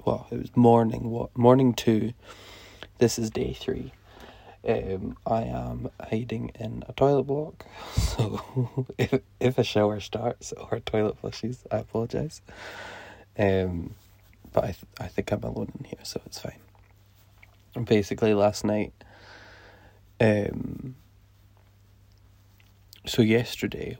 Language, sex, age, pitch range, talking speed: English, male, 20-39, 100-115 Hz, 125 wpm